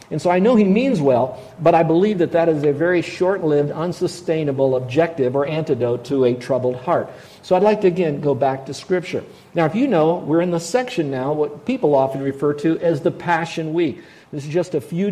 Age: 50-69